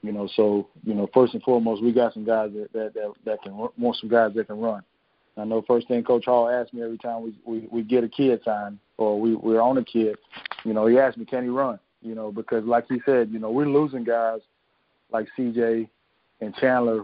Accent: American